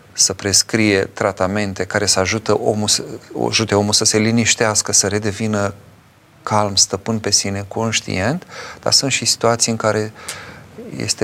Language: Romanian